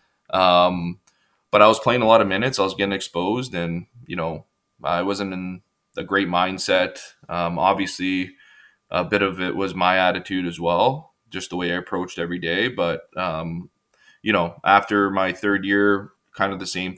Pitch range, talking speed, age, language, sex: 90-100 Hz, 185 wpm, 20-39, English, male